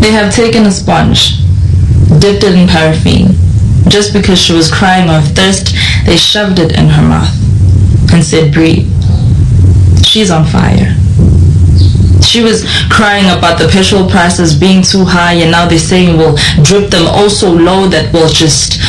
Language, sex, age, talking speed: English, female, 20-39, 165 wpm